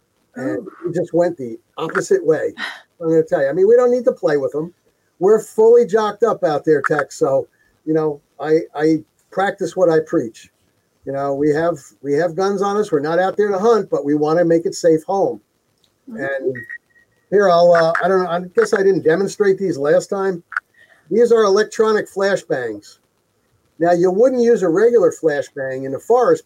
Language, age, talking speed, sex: English, 50-69, 200 wpm, male